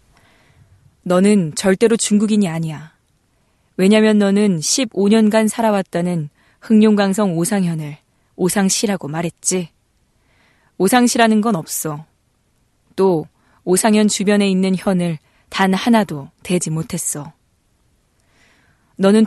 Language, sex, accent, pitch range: Korean, female, native, 165-210 Hz